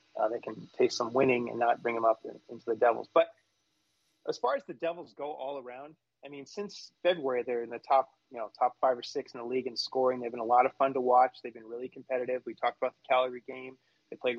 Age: 20-39